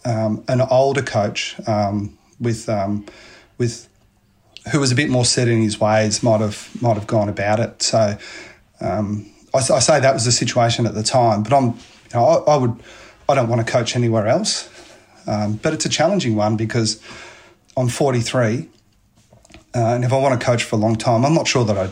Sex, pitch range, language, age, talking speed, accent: male, 105-120 Hz, English, 30-49, 205 wpm, Australian